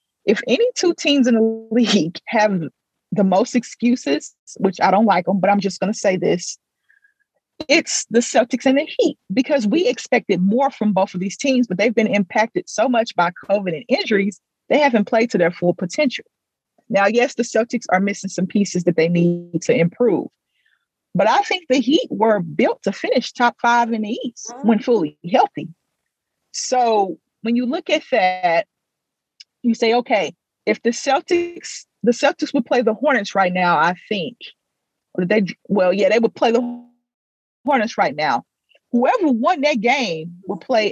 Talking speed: 180 wpm